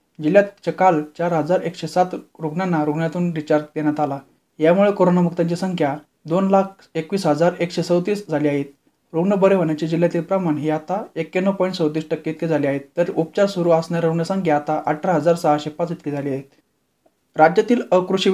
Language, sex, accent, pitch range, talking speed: Marathi, male, native, 155-185 Hz, 130 wpm